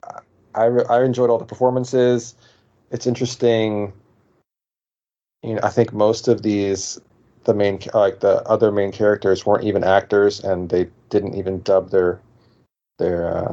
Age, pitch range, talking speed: 30-49, 95-115 Hz, 145 wpm